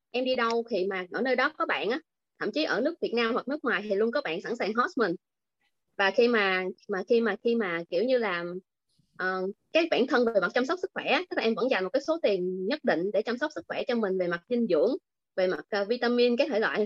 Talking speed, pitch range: 280 wpm, 195-265 Hz